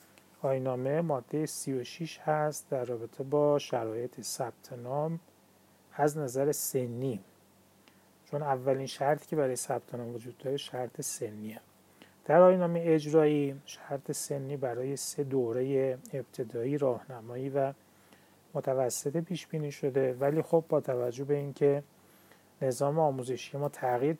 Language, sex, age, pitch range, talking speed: Persian, male, 30-49, 125-150 Hz, 130 wpm